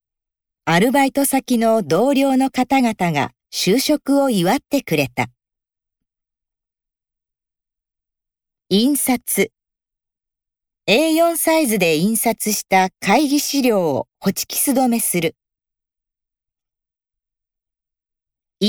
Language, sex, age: Japanese, female, 50-69